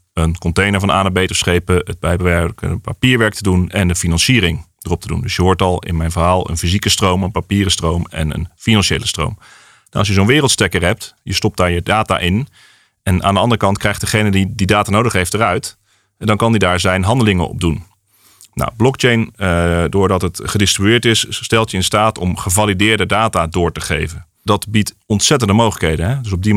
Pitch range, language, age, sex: 90-110 Hz, Dutch, 40-59, male